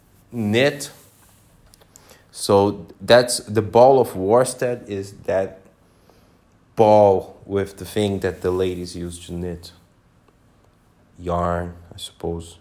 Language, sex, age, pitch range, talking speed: English, male, 30-49, 95-140 Hz, 105 wpm